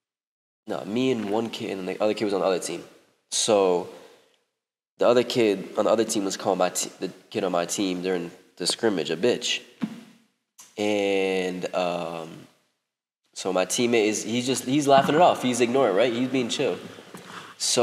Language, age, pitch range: English, 20-39, 100-130 Hz